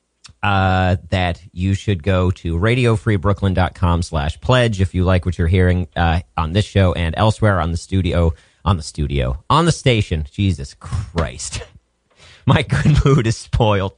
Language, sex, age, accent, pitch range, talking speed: English, male, 40-59, American, 85-115 Hz, 160 wpm